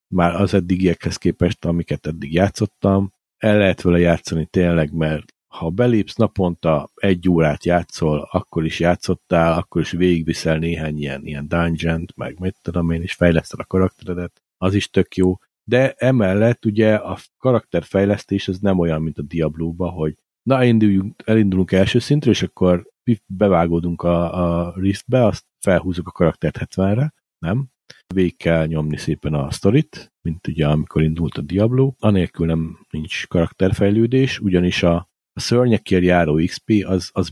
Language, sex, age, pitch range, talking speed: Hungarian, male, 50-69, 85-105 Hz, 150 wpm